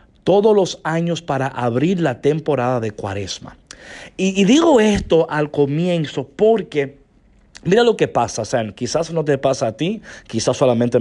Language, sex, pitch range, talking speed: Spanish, male, 125-185 Hz, 160 wpm